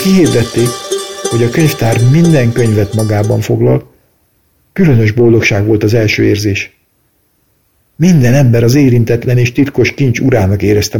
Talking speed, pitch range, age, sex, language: 125 wpm, 110-135 Hz, 50-69, male, Hungarian